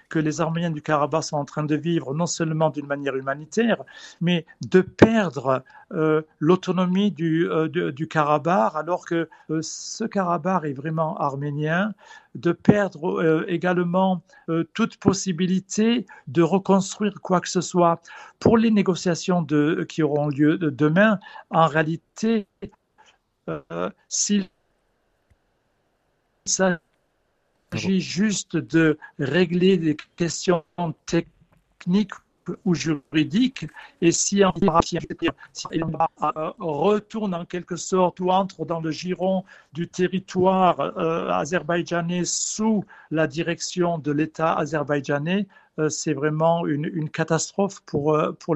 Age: 60-79